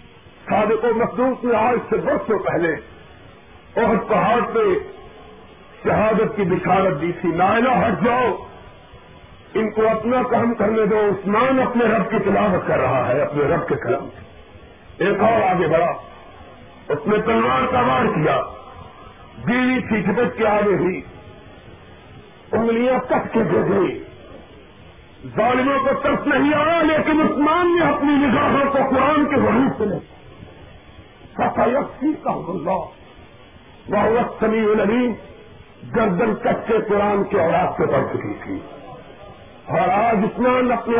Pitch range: 170-245 Hz